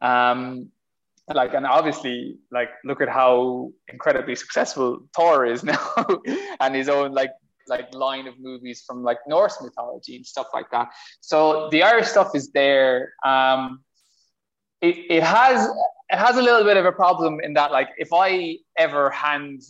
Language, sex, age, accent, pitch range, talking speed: English, male, 20-39, Irish, 125-150 Hz, 165 wpm